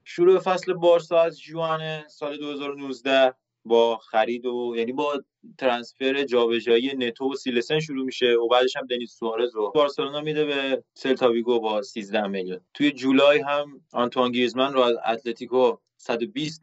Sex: male